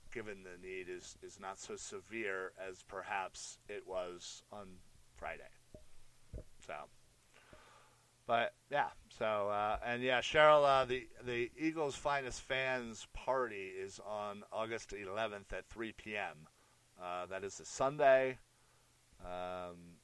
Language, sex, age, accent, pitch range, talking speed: English, male, 40-59, American, 95-115 Hz, 125 wpm